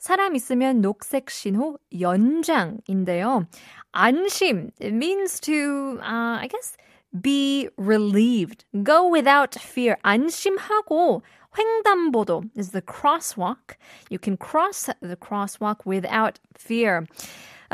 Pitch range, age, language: 200-290 Hz, 20-39, Korean